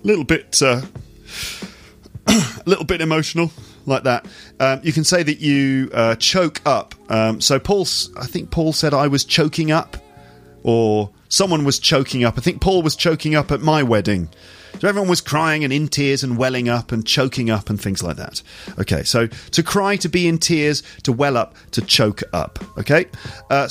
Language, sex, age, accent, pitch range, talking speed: English, male, 40-59, British, 110-155 Hz, 185 wpm